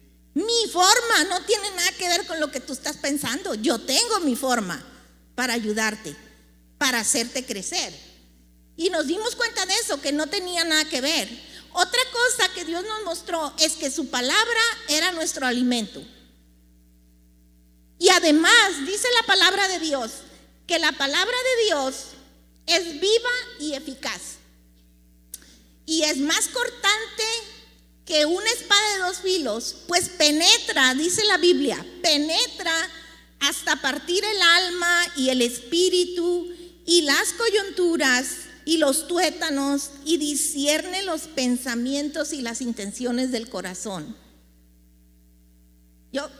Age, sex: 40-59, female